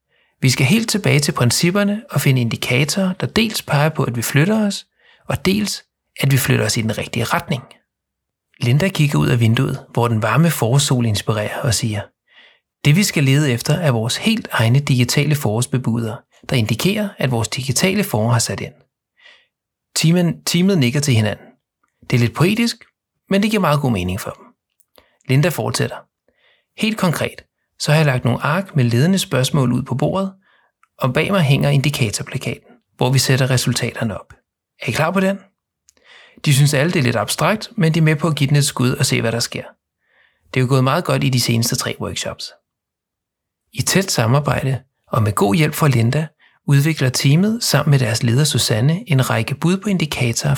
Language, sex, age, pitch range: Danish, male, 30-49, 120-160 Hz